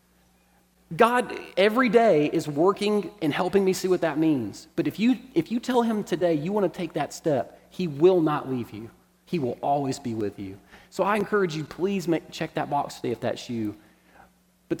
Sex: male